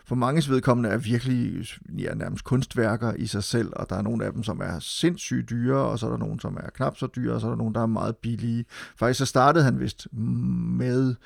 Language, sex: Danish, male